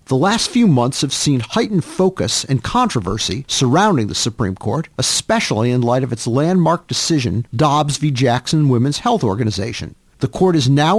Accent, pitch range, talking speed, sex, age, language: American, 120-170 Hz, 170 wpm, male, 50-69, English